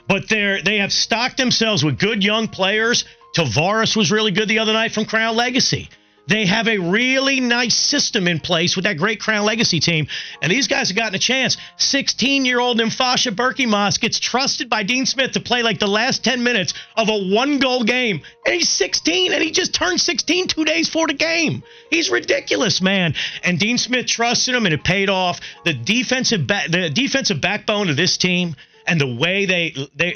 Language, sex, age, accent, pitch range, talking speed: English, male, 40-59, American, 165-230 Hz, 200 wpm